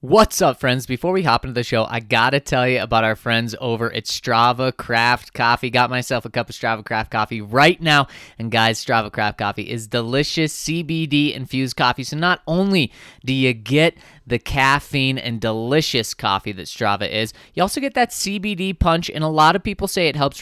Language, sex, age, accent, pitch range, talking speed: English, male, 20-39, American, 125-165 Hz, 200 wpm